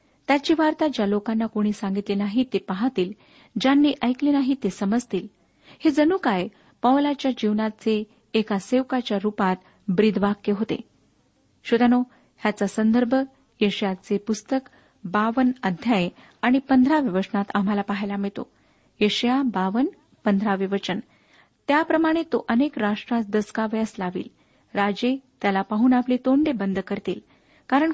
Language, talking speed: Marathi, 120 wpm